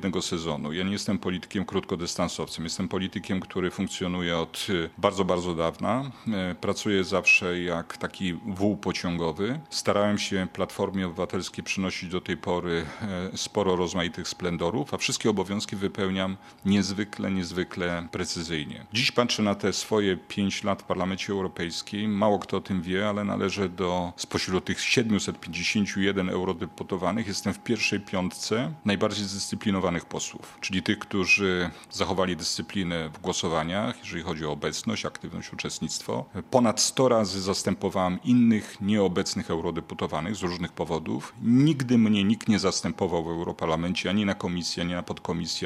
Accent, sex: native, male